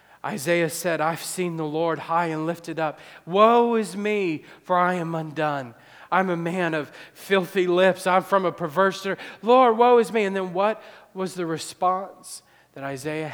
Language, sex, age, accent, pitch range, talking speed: English, male, 40-59, American, 150-195 Hz, 175 wpm